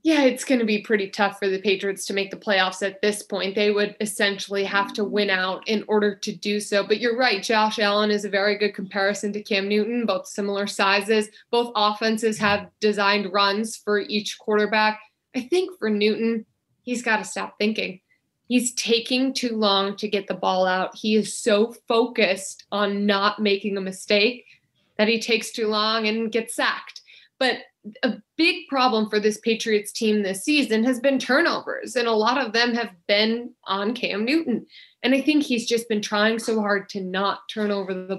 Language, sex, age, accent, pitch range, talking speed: English, female, 20-39, American, 205-240 Hz, 195 wpm